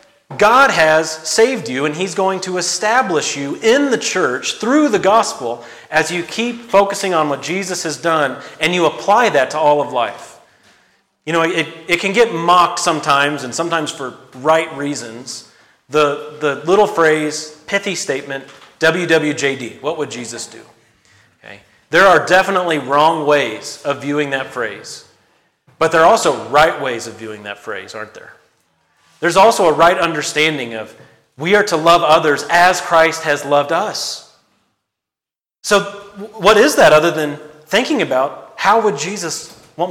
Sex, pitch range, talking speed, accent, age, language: male, 145-175 Hz, 160 wpm, American, 40-59, English